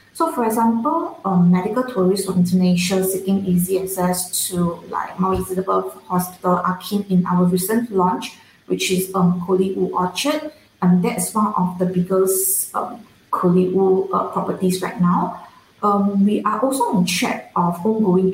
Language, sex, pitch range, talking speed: English, female, 180-195 Hz, 150 wpm